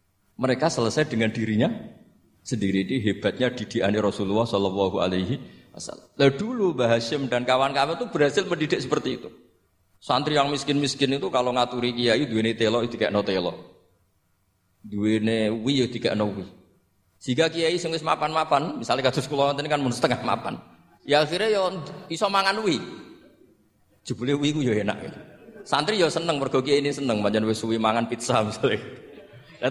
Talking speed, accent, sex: 150 wpm, native, male